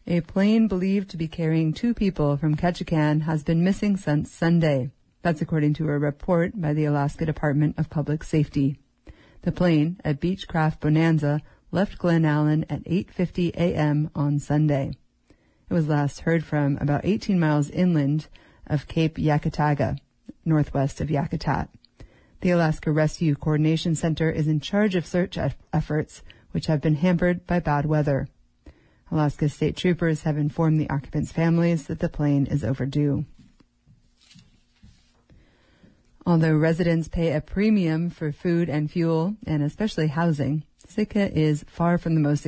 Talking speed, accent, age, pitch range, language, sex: 145 wpm, American, 40-59, 145-170 Hz, English, female